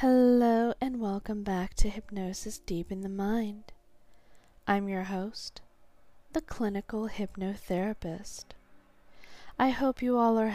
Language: English